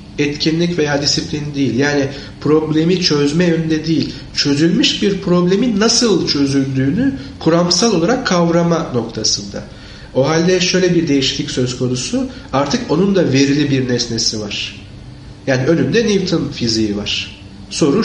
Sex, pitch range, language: male, 120-180 Hz, Turkish